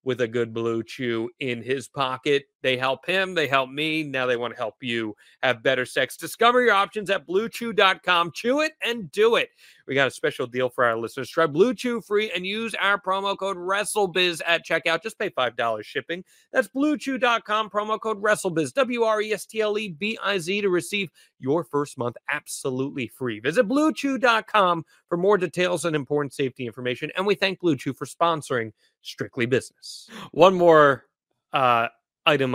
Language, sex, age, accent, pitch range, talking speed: English, male, 30-49, American, 130-195 Hz, 170 wpm